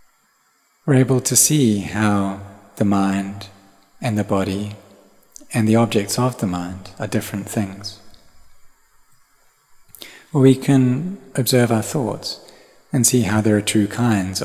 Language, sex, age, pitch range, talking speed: English, male, 30-49, 100-120 Hz, 130 wpm